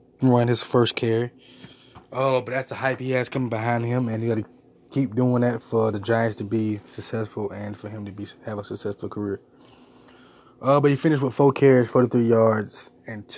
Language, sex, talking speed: English, male, 210 wpm